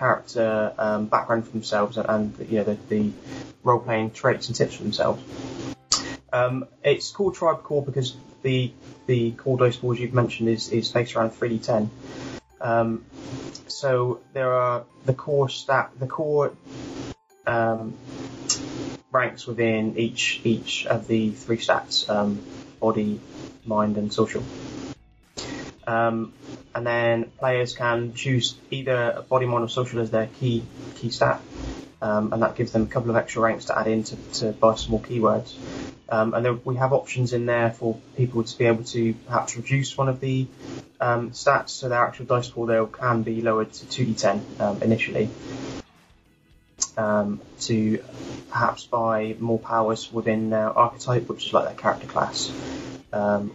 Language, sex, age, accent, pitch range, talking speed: English, male, 20-39, British, 110-125 Hz, 160 wpm